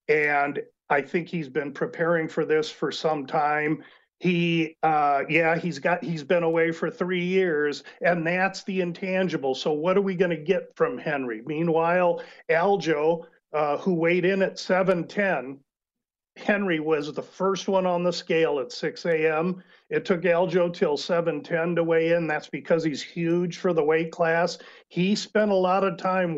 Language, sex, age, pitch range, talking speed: English, male, 50-69, 155-180 Hz, 170 wpm